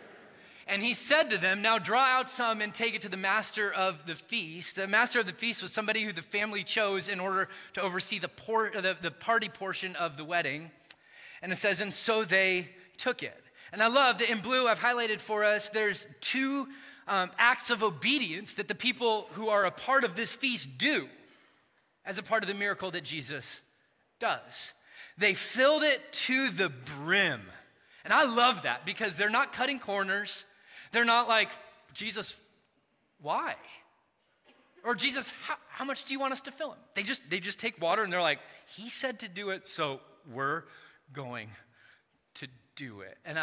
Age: 20-39